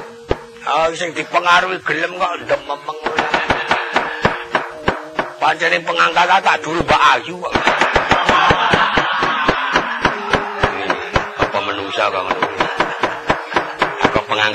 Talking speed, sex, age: 85 wpm, male, 50-69